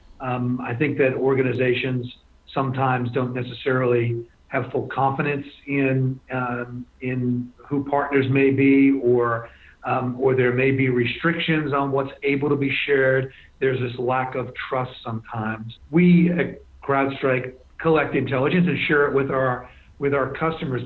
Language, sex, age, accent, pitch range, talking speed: English, male, 40-59, American, 125-145 Hz, 145 wpm